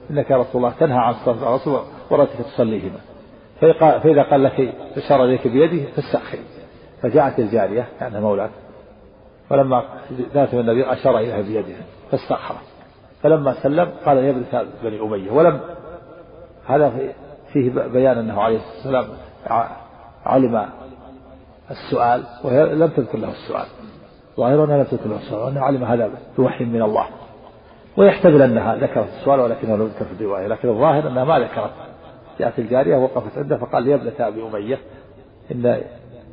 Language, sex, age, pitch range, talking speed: Arabic, male, 50-69, 115-145 Hz, 140 wpm